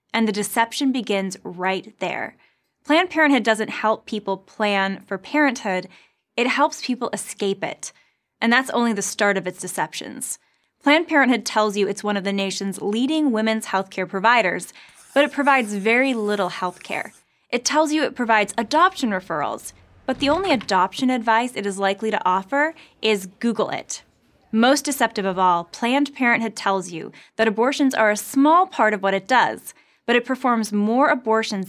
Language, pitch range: English, 200-265 Hz